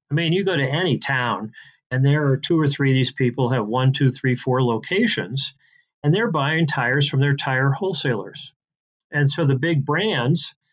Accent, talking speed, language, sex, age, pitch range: American, 200 wpm, English, male, 40-59, 130-150 Hz